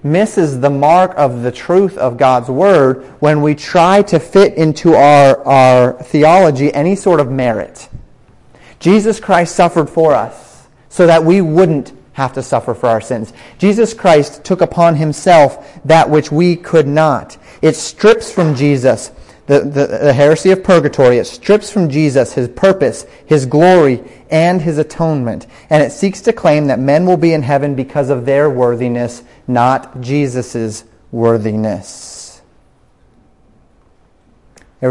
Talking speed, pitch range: 150 wpm, 125-160 Hz